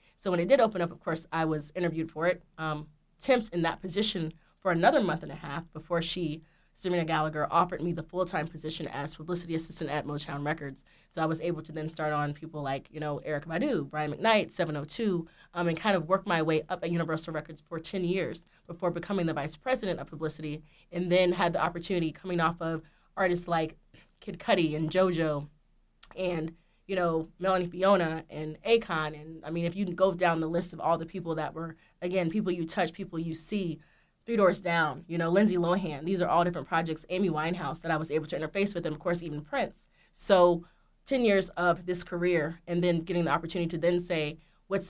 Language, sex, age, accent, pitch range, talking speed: English, female, 20-39, American, 155-180 Hz, 215 wpm